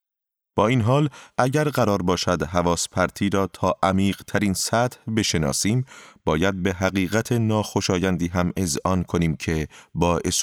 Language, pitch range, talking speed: Persian, 90-115 Hz, 125 wpm